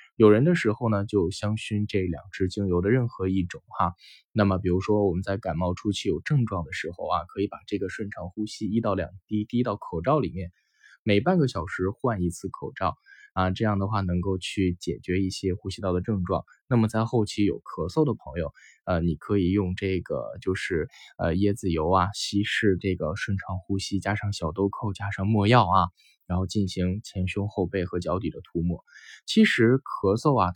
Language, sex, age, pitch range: Chinese, male, 10-29, 95-110 Hz